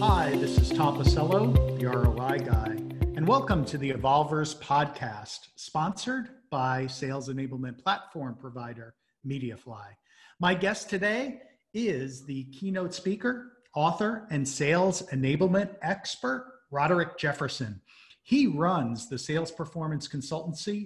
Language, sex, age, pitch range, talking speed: English, male, 50-69, 130-170 Hz, 120 wpm